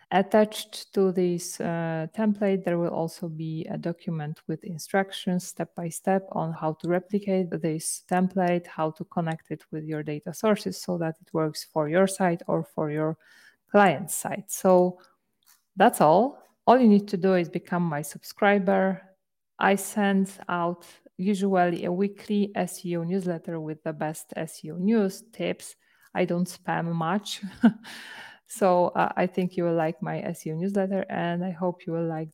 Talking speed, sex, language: 160 wpm, female, English